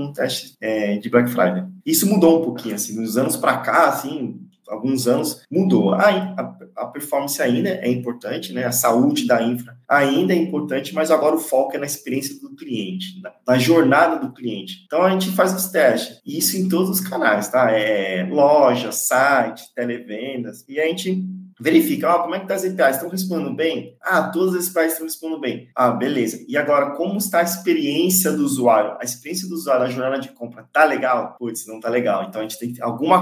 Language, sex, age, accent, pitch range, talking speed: Portuguese, male, 20-39, Brazilian, 125-170 Hz, 205 wpm